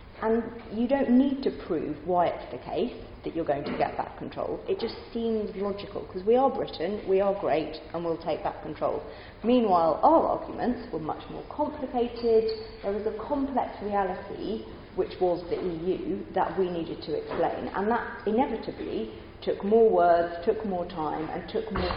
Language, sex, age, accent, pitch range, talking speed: English, female, 30-49, British, 160-220 Hz, 180 wpm